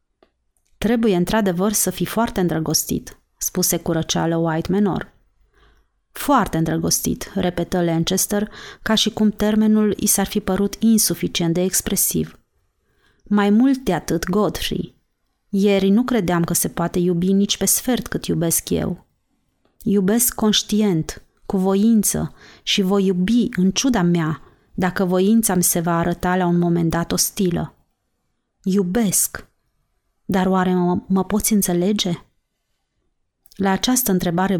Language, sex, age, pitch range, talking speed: Romanian, female, 30-49, 170-205 Hz, 130 wpm